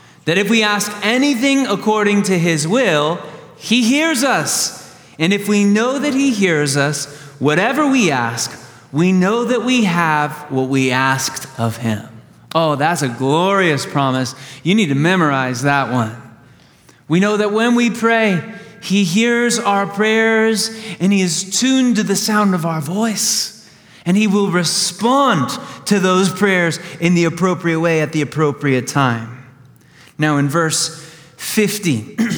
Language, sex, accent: English, male, American